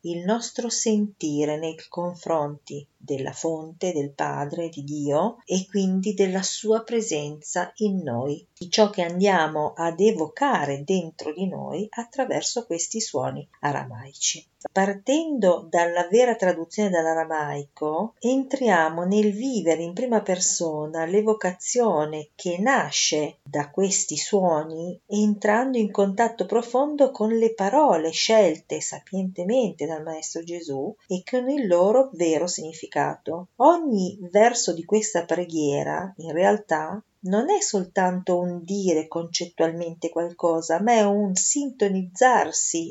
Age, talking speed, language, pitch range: 50-69, 115 wpm, Italian, 160-215 Hz